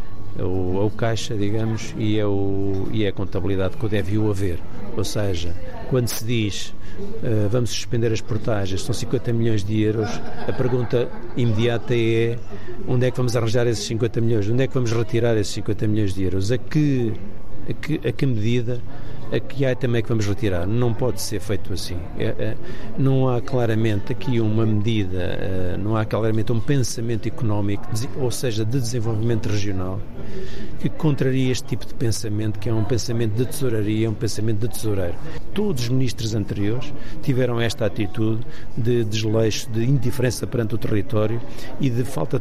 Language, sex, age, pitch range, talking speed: Portuguese, male, 50-69, 105-125 Hz, 175 wpm